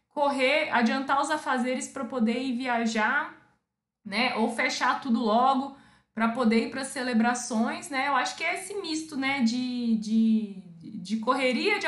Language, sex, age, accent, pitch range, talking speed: Portuguese, female, 20-39, Brazilian, 230-290 Hz, 155 wpm